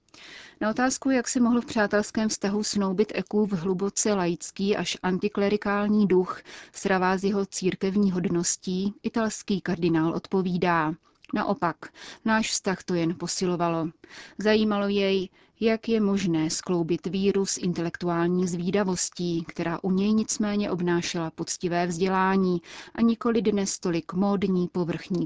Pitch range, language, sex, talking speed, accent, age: 175-205 Hz, Czech, female, 125 wpm, native, 30-49